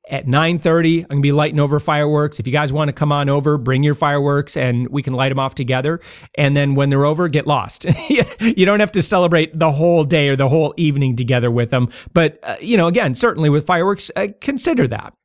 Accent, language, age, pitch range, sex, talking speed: American, English, 40-59, 145-190 Hz, male, 235 wpm